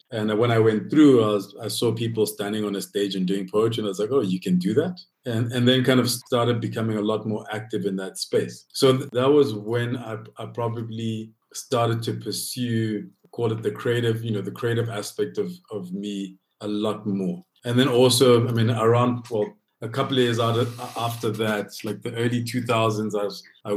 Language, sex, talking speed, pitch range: English, male, 215 wpm, 105-120 Hz